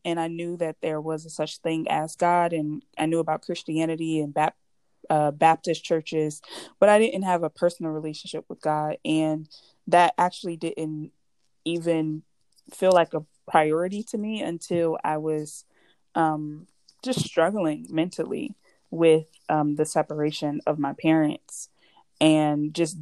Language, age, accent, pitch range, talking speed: English, 20-39, American, 150-165 Hz, 150 wpm